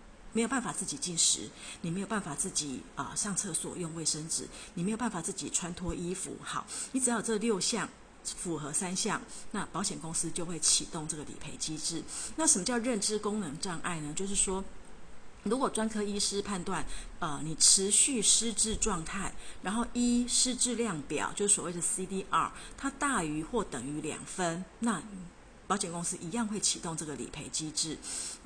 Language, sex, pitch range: Chinese, female, 160-215 Hz